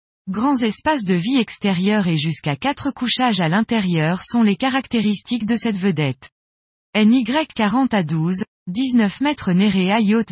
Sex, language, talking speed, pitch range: female, French, 150 wpm, 175-240 Hz